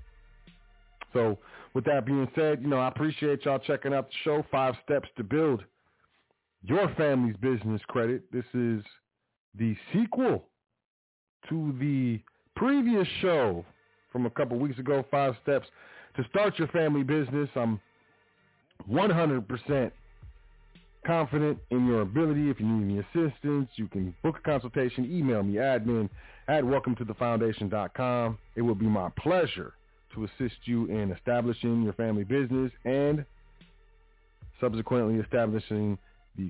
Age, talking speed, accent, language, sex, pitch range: 40-59, 145 wpm, American, English, male, 110-135 Hz